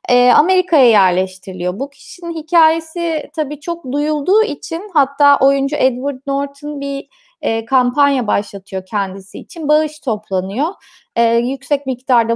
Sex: female